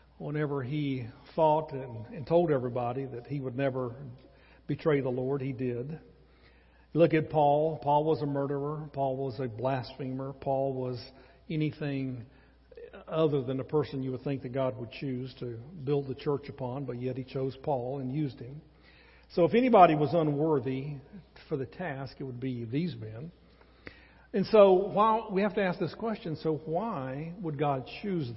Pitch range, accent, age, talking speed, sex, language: 130-160 Hz, American, 50-69, 170 wpm, male, English